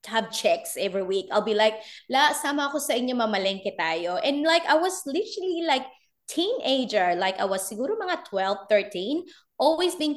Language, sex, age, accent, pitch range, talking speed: Filipino, female, 20-39, native, 215-295 Hz, 170 wpm